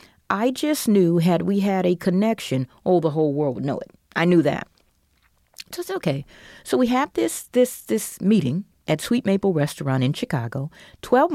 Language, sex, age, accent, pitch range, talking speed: English, female, 40-59, American, 150-205 Hz, 185 wpm